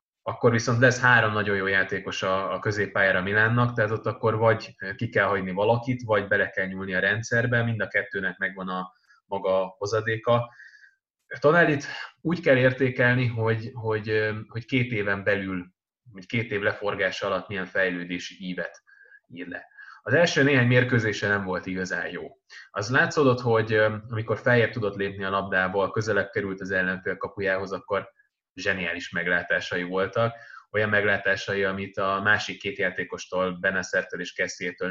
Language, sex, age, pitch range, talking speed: Hungarian, male, 20-39, 95-115 Hz, 150 wpm